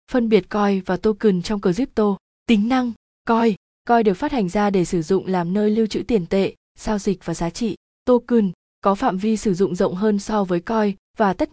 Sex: female